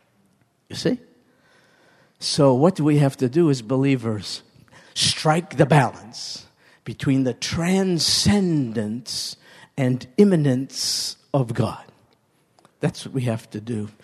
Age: 50-69